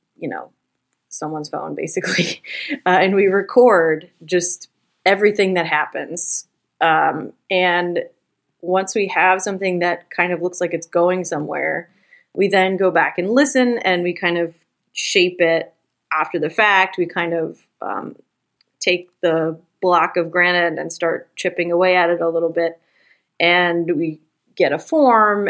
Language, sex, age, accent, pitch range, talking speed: English, female, 30-49, American, 170-195 Hz, 155 wpm